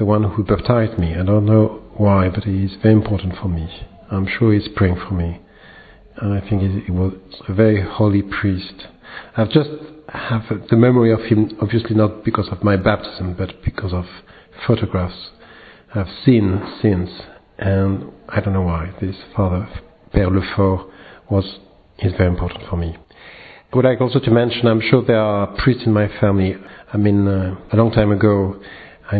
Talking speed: 175 wpm